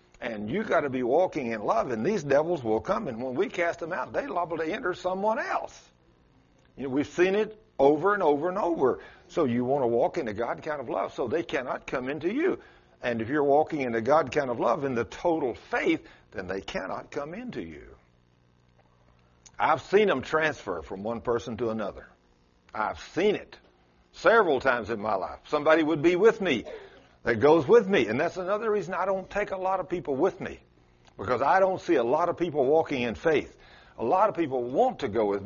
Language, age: English, 60-79